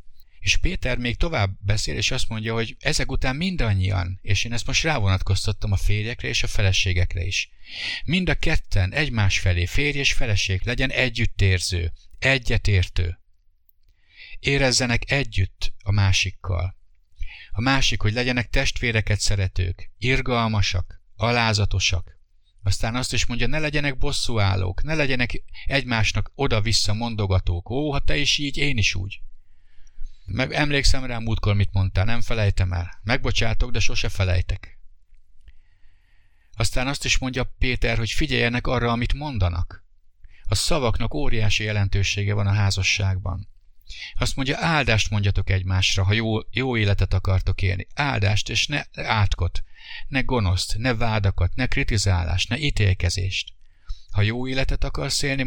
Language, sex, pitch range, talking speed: English, male, 95-120 Hz, 135 wpm